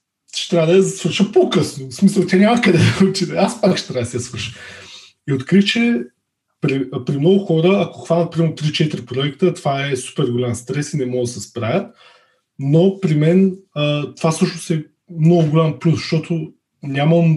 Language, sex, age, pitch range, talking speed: Bulgarian, male, 20-39, 130-175 Hz, 185 wpm